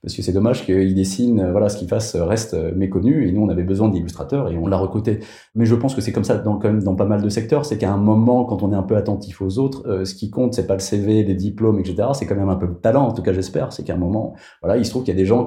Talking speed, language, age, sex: 325 wpm, French, 30-49, male